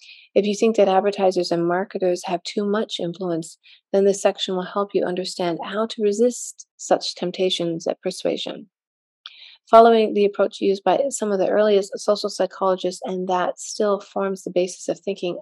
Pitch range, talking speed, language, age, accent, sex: 185-225 Hz, 170 wpm, English, 30-49, American, female